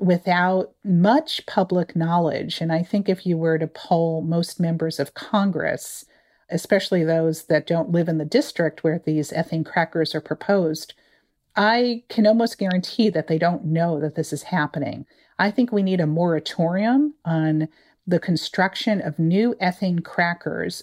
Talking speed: 160 wpm